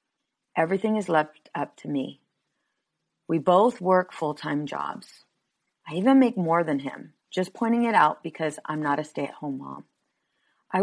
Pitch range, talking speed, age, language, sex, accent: 155-200 Hz, 155 wpm, 30-49, English, female, American